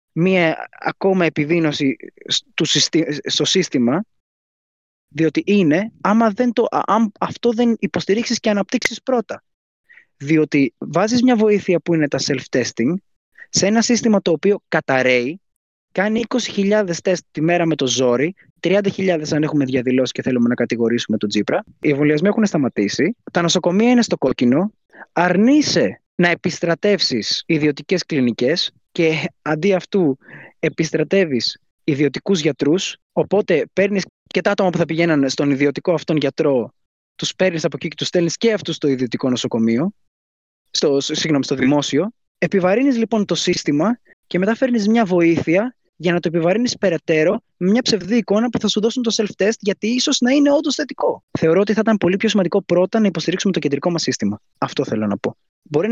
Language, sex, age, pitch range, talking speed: Greek, male, 20-39, 150-210 Hz, 155 wpm